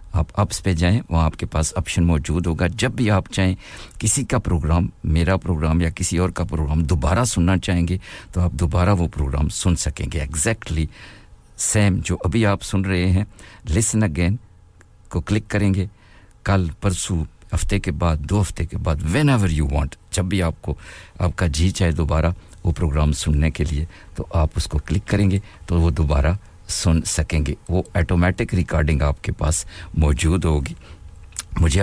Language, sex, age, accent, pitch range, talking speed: English, male, 50-69, Indian, 80-95 Hz, 160 wpm